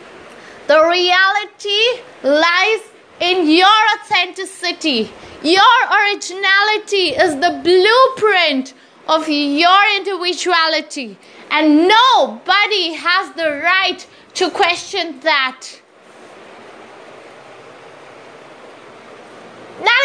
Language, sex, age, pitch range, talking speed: English, female, 20-39, 325-420 Hz, 70 wpm